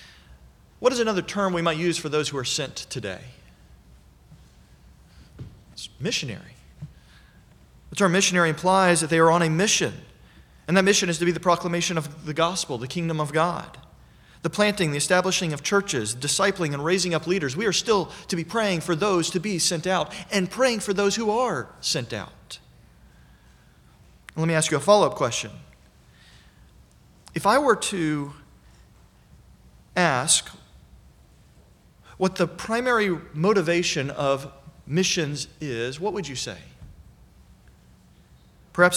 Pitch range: 145-185 Hz